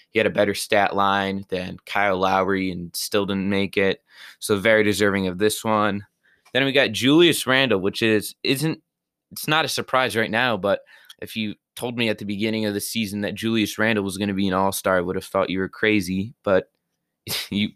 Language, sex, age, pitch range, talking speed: English, male, 20-39, 100-120 Hz, 215 wpm